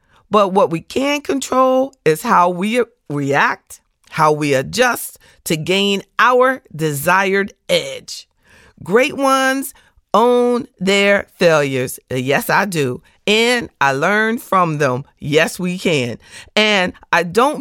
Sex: female